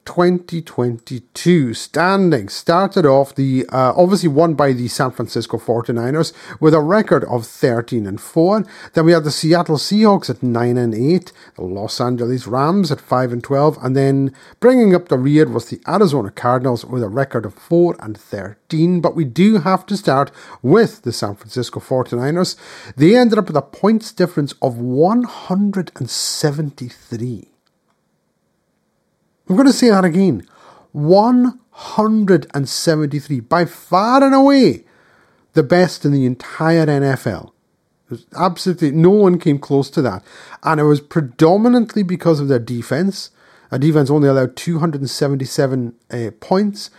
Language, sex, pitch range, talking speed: English, male, 130-185 Hz, 145 wpm